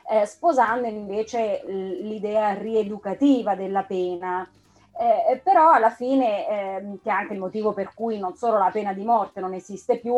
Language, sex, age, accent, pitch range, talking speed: Italian, female, 30-49, native, 200-240 Hz, 165 wpm